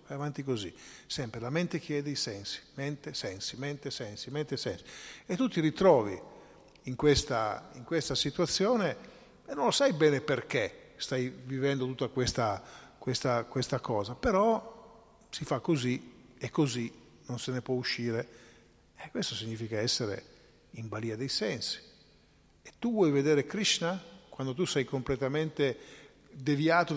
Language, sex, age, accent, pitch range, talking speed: Italian, male, 40-59, native, 120-160 Hz, 145 wpm